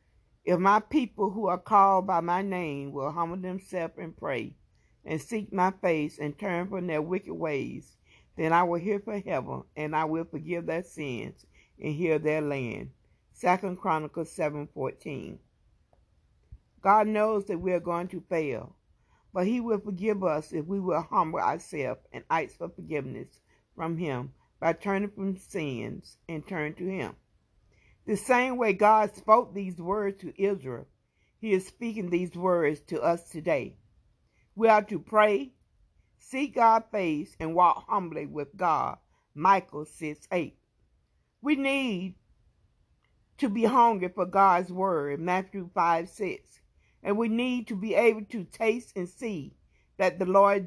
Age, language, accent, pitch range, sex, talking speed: 60-79, English, American, 160-210 Hz, female, 155 wpm